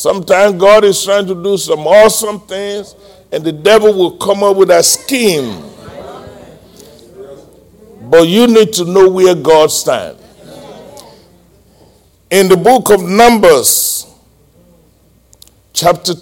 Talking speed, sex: 120 wpm, male